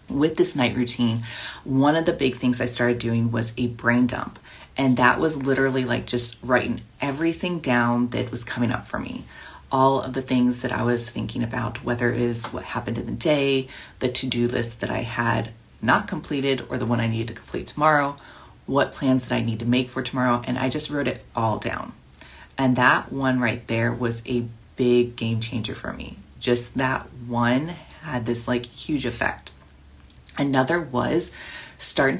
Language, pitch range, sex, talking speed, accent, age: English, 120-135 Hz, female, 190 wpm, American, 30-49